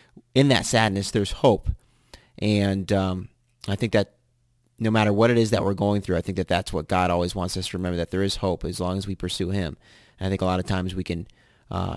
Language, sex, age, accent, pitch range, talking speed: English, male, 30-49, American, 90-105 Hz, 245 wpm